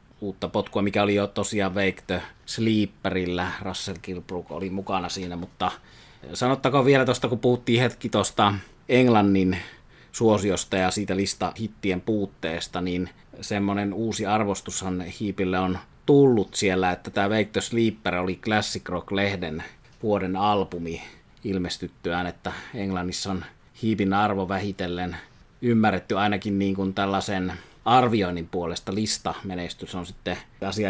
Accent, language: native, Finnish